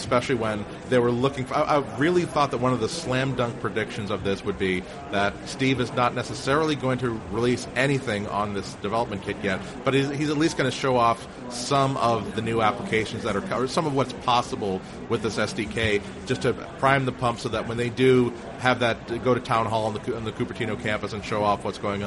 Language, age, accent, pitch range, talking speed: English, 30-49, American, 105-130 Hz, 225 wpm